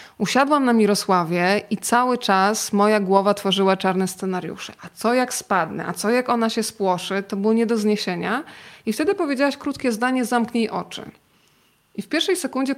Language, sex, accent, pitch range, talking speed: Polish, female, native, 195-235 Hz, 175 wpm